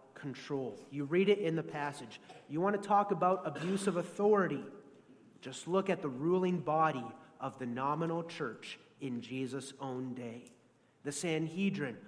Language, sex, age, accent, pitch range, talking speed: English, male, 30-49, American, 150-210 Hz, 155 wpm